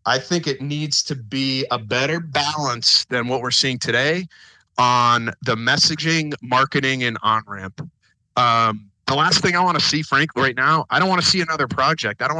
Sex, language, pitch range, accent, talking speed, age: male, English, 125-160 Hz, American, 195 wpm, 30-49